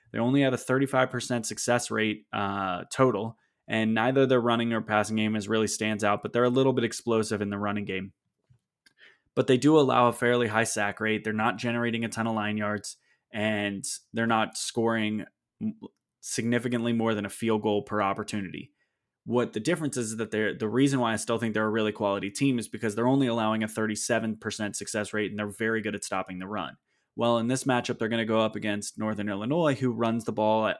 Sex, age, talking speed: male, 20-39, 215 wpm